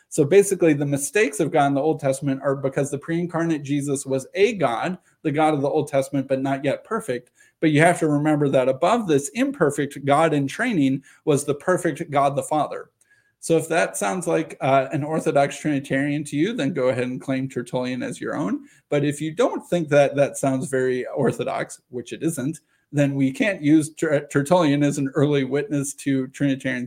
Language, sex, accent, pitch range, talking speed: English, male, American, 135-170 Hz, 200 wpm